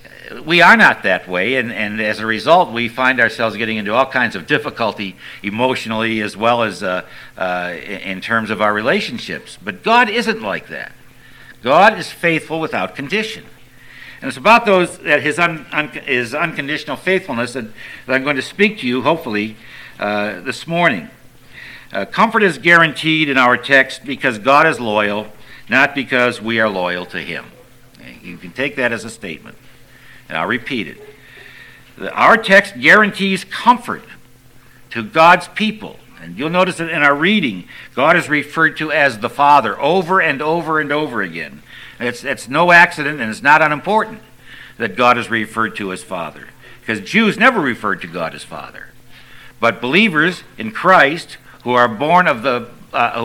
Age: 60-79